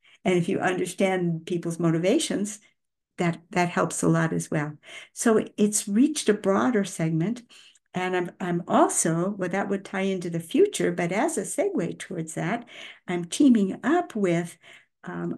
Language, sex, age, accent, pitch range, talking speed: English, female, 60-79, American, 170-210 Hz, 160 wpm